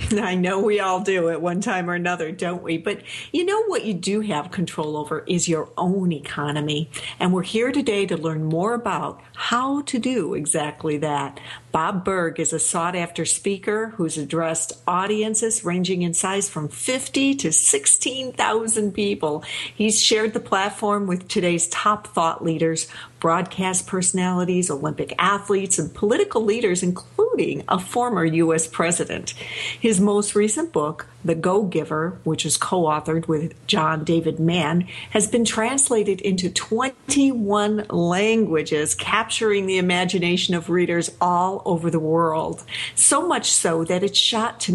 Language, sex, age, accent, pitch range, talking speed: English, female, 50-69, American, 165-215 Hz, 155 wpm